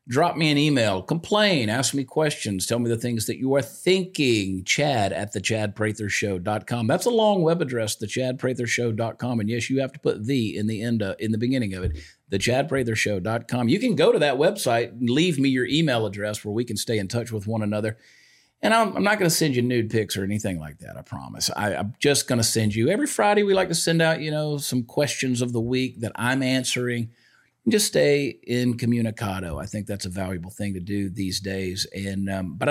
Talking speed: 220 wpm